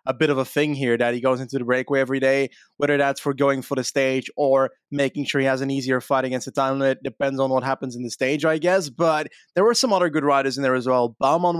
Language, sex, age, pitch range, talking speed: English, male, 20-39, 135-165 Hz, 280 wpm